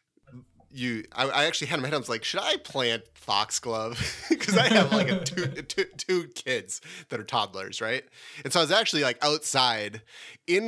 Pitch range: 115-170 Hz